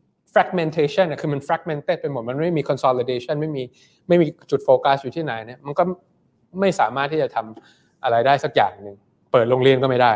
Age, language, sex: 20-39, Thai, male